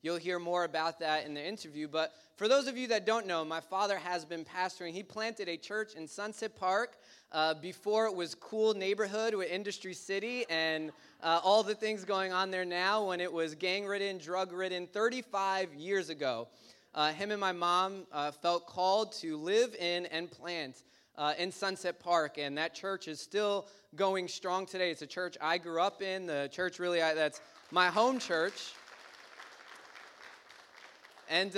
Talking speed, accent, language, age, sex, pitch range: 180 wpm, American, English, 20-39, male, 160-195 Hz